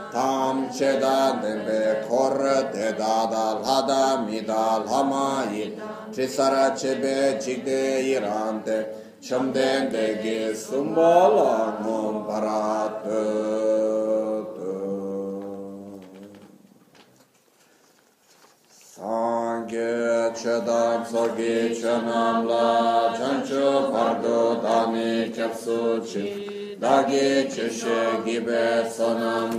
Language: Italian